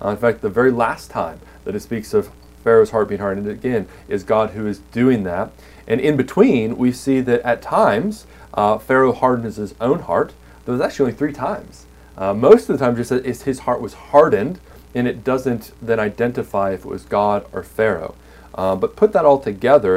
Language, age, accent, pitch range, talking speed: English, 30-49, American, 95-130 Hz, 205 wpm